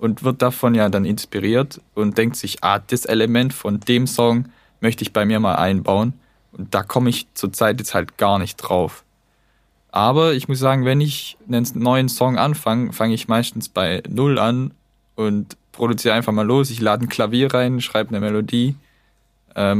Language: German